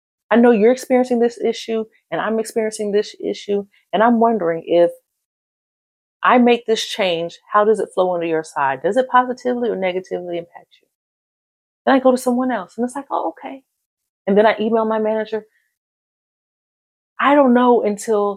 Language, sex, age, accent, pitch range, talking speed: English, female, 30-49, American, 210-260 Hz, 175 wpm